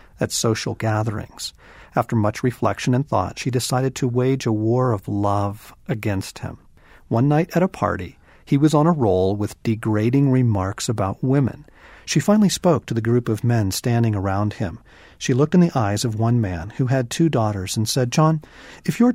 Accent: American